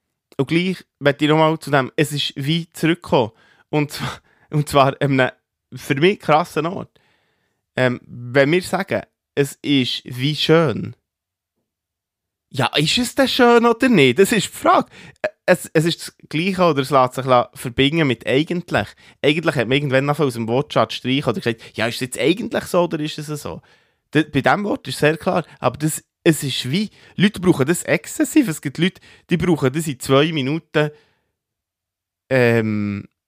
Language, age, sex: German, 20-39, male